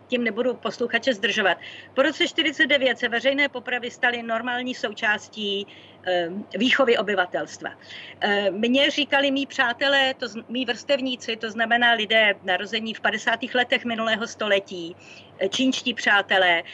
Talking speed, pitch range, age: 125 wpm, 205-250 Hz, 50-69